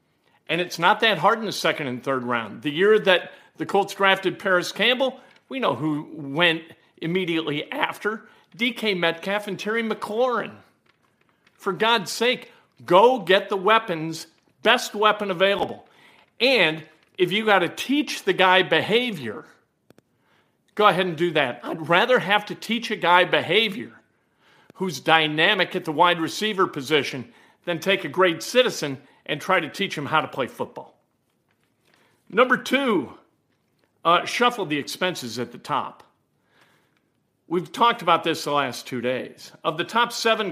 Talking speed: 155 wpm